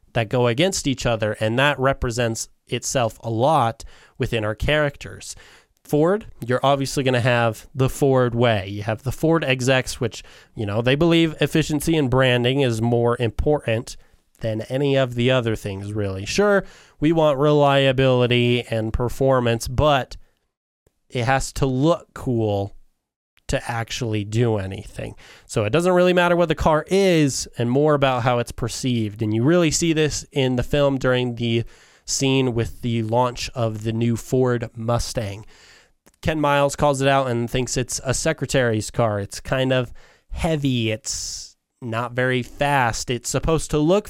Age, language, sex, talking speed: 20-39, English, male, 160 wpm